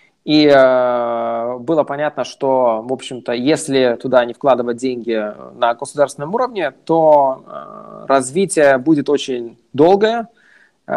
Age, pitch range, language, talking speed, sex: 20-39, 125-155 Hz, Russian, 105 wpm, male